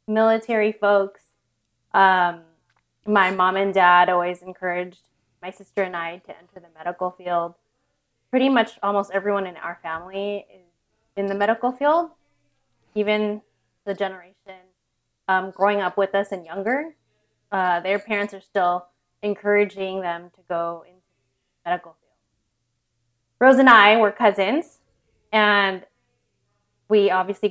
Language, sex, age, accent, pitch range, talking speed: English, female, 20-39, American, 175-205 Hz, 130 wpm